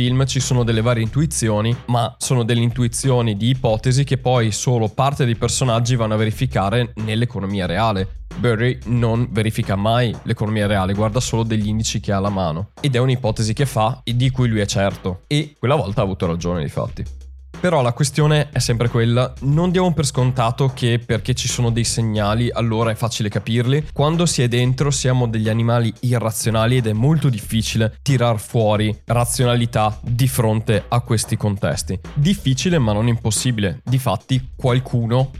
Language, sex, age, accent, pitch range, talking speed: Italian, male, 20-39, native, 110-130 Hz, 170 wpm